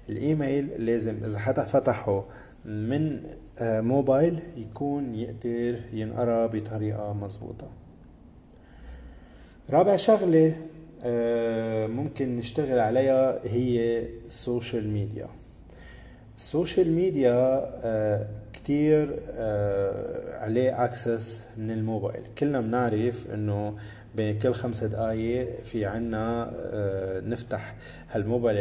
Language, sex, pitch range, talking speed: English, male, 105-125 Hz, 80 wpm